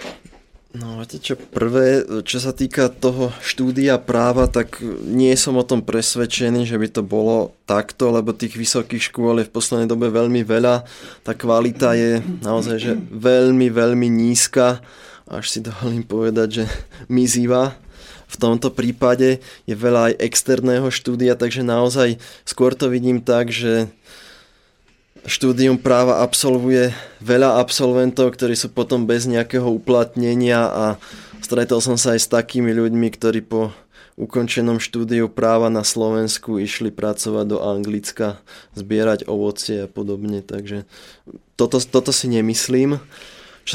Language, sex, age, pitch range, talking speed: Slovak, male, 20-39, 115-130 Hz, 135 wpm